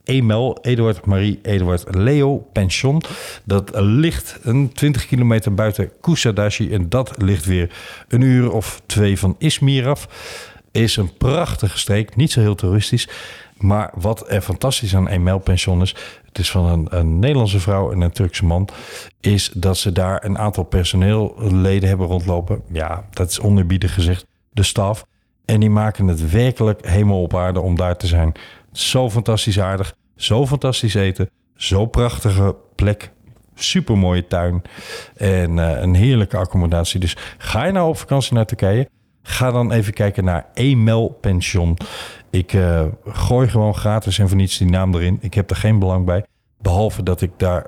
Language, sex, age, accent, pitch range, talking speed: Dutch, male, 50-69, Dutch, 95-115 Hz, 165 wpm